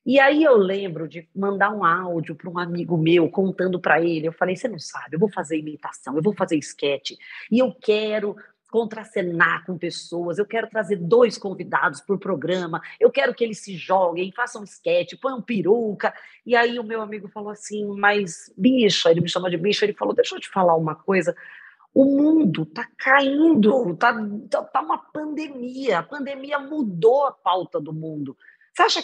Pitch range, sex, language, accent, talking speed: 180-255 Hz, female, Portuguese, Brazilian, 185 wpm